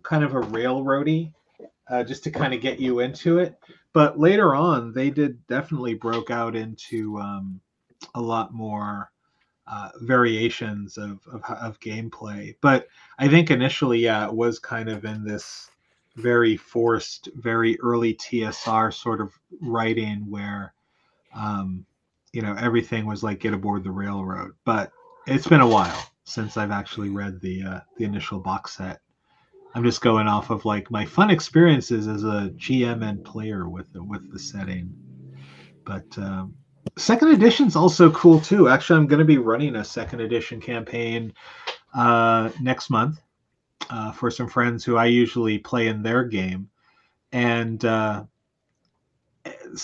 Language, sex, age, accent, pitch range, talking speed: English, male, 30-49, American, 105-145 Hz, 155 wpm